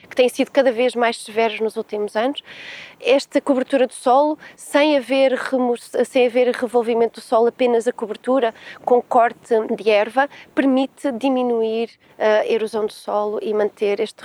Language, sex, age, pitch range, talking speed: Portuguese, female, 20-39, 220-255 Hz, 160 wpm